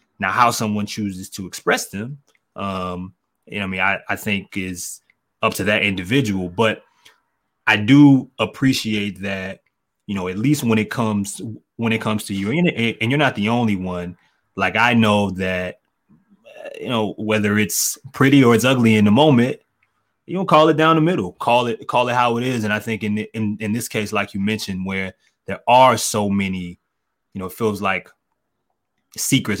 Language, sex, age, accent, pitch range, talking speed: English, male, 20-39, American, 95-120 Hz, 195 wpm